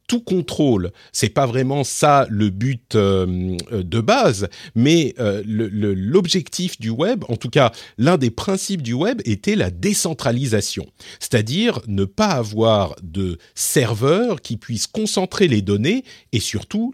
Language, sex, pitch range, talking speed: French, male, 105-165 Hz, 135 wpm